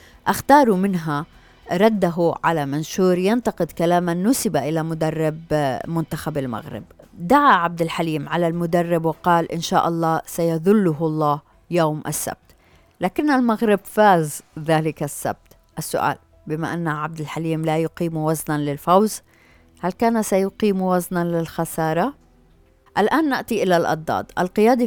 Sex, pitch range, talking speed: female, 155-180 Hz, 120 wpm